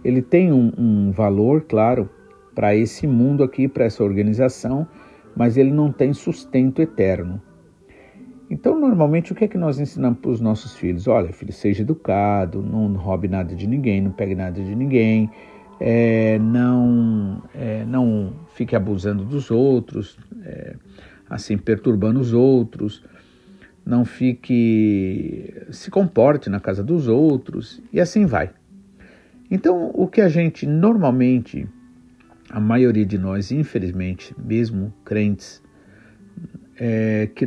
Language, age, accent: Portuguese, 50-69, Brazilian